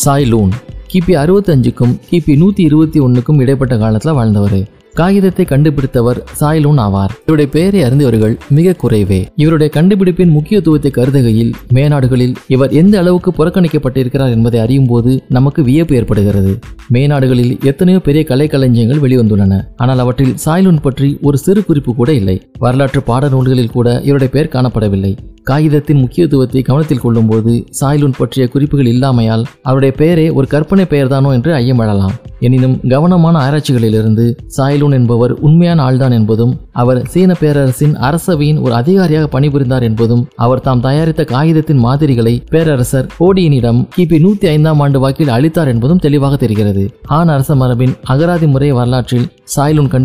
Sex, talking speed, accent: male, 130 wpm, native